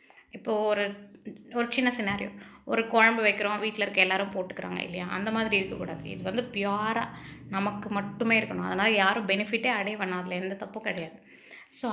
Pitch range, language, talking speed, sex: 195-230 Hz, Tamil, 160 wpm, female